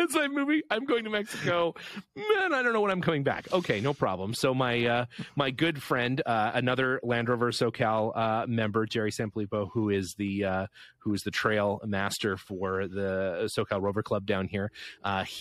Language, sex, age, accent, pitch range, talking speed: English, male, 30-49, American, 115-150 Hz, 190 wpm